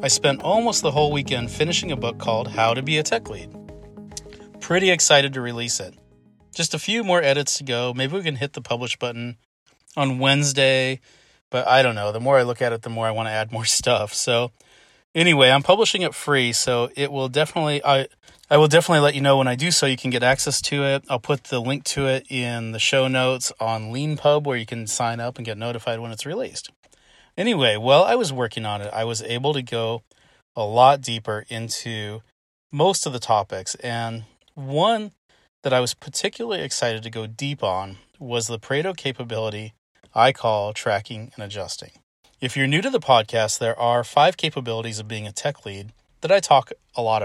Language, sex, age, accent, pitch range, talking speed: English, male, 30-49, American, 115-145 Hz, 210 wpm